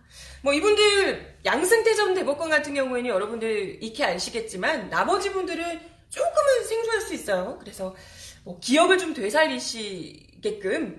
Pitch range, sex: 230-375 Hz, female